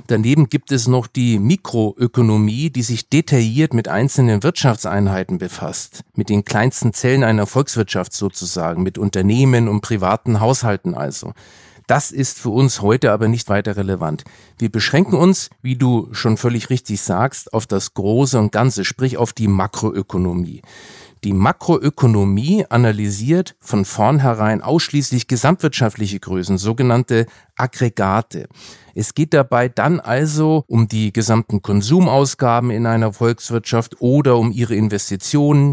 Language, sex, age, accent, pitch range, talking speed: German, male, 40-59, German, 105-135 Hz, 135 wpm